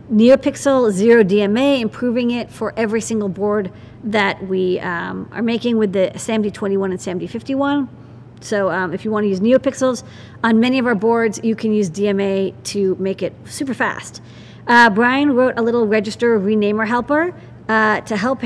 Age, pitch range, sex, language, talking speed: 40-59, 205-245 Hz, female, English, 165 wpm